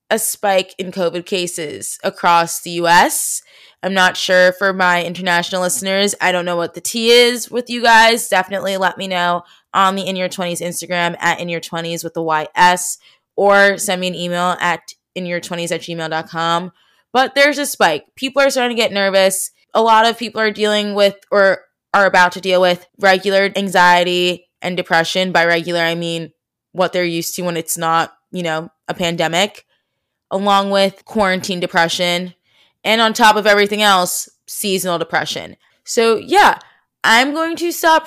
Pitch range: 175-200 Hz